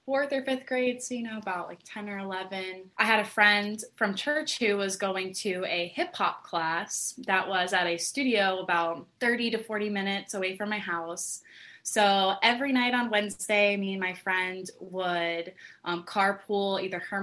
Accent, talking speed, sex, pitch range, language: American, 190 wpm, female, 180-215 Hz, English